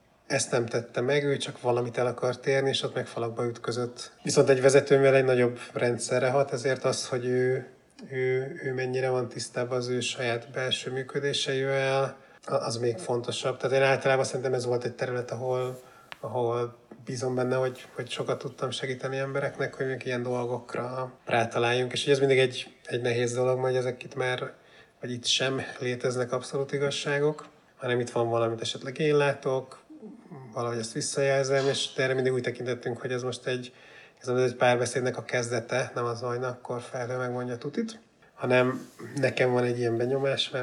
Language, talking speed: Hungarian, 175 wpm